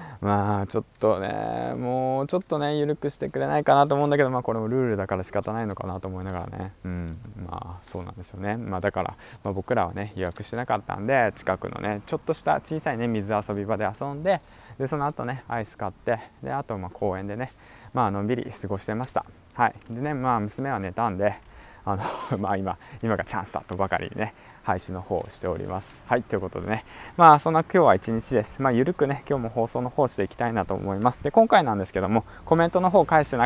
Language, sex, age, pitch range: Japanese, male, 20-39, 95-130 Hz